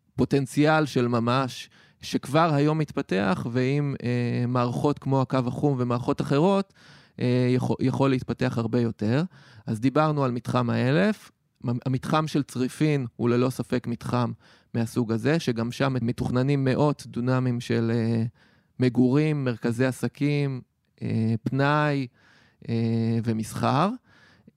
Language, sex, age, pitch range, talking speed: Hebrew, male, 20-39, 120-150 Hz, 115 wpm